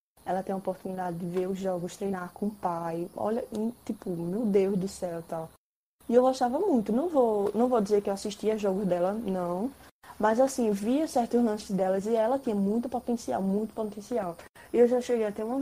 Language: Portuguese